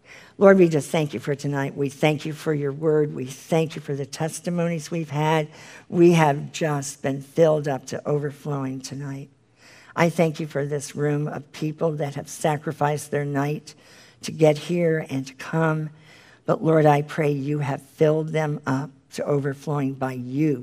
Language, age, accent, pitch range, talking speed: English, 50-69, American, 130-155 Hz, 180 wpm